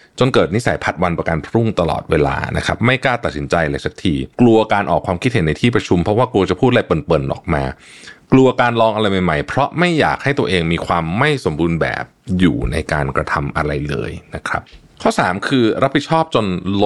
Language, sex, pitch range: Thai, male, 85-115 Hz